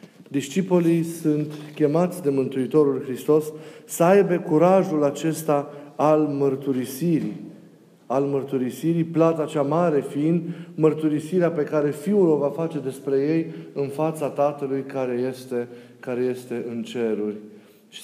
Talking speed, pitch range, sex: 125 wpm, 125-160 Hz, male